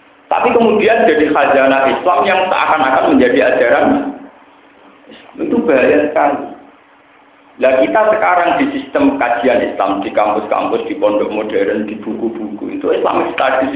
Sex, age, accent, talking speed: male, 50-69, native, 125 wpm